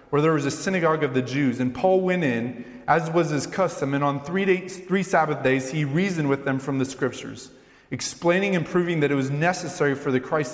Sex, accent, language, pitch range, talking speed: male, American, English, 130-160 Hz, 230 wpm